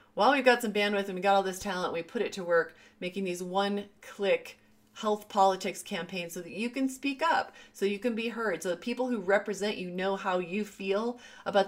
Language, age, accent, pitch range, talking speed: English, 30-49, American, 180-215 Hz, 225 wpm